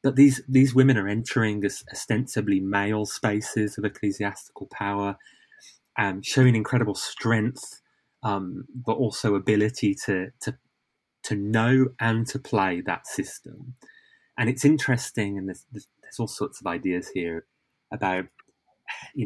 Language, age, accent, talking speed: English, 20-39, British, 140 wpm